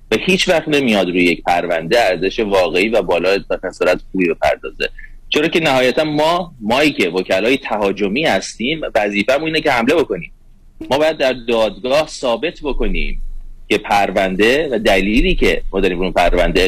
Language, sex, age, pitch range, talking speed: Persian, male, 30-49, 100-135 Hz, 150 wpm